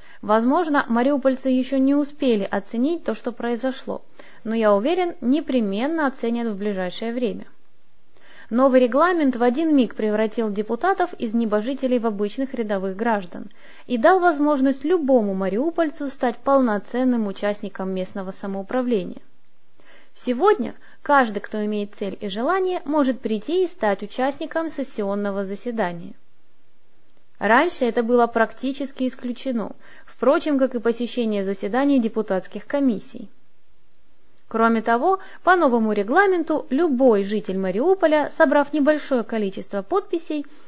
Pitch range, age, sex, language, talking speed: 210-290 Hz, 20-39, female, Russian, 115 wpm